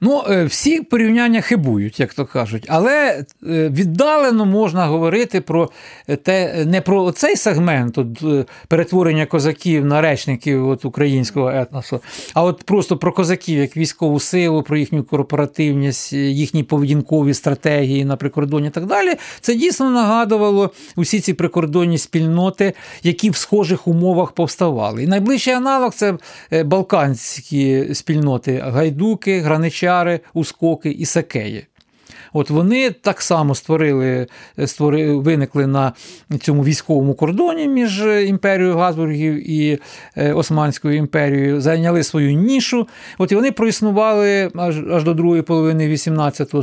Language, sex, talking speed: Ukrainian, male, 125 wpm